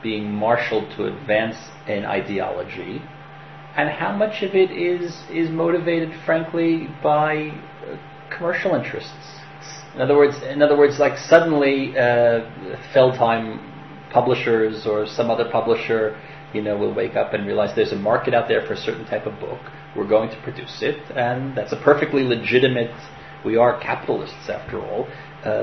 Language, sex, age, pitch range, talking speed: English, male, 30-49, 110-140 Hz, 160 wpm